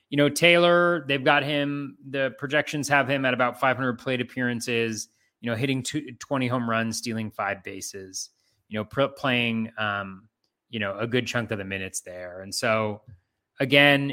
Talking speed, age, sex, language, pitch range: 170 wpm, 30-49, male, English, 105-130 Hz